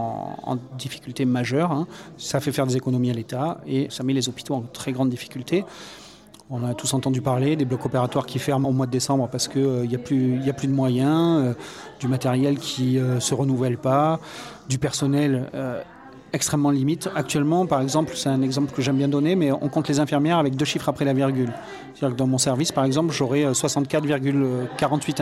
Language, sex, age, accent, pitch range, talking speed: French, male, 30-49, French, 130-145 Hz, 200 wpm